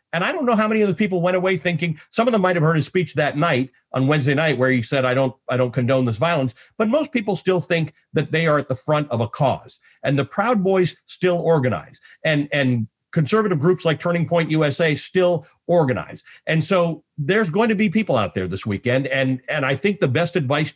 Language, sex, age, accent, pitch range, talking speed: English, male, 50-69, American, 130-185 Hz, 240 wpm